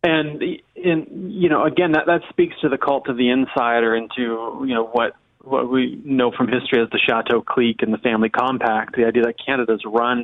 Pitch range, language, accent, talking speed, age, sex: 120-165 Hz, English, American, 210 wpm, 30-49, male